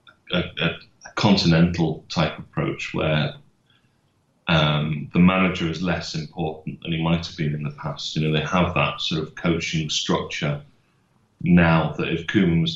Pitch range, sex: 75-90 Hz, male